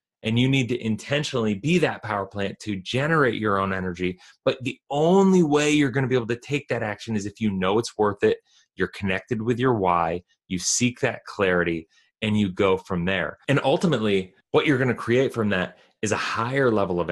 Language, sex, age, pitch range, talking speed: English, male, 30-49, 95-115 Hz, 215 wpm